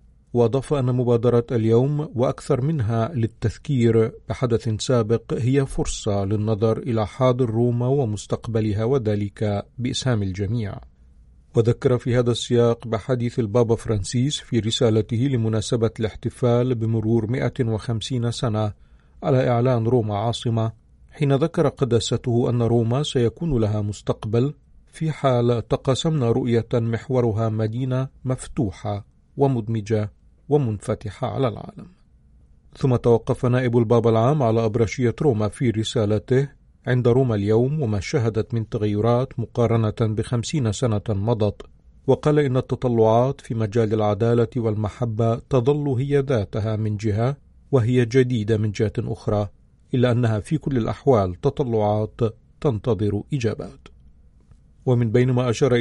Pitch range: 110-130 Hz